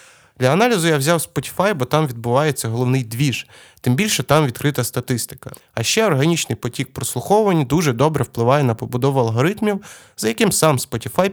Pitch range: 120-150 Hz